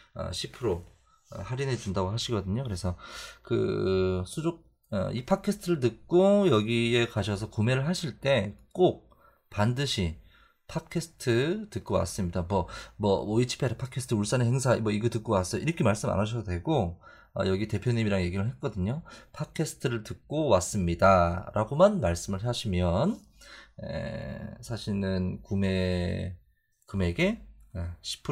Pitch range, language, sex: 95-135 Hz, Korean, male